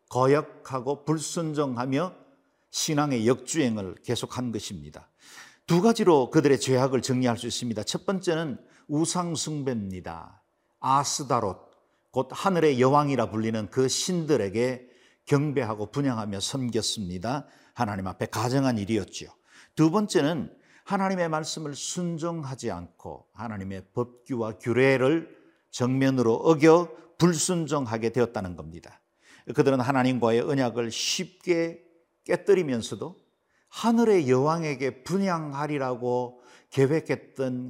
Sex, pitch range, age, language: male, 120-155 Hz, 50-69, Korean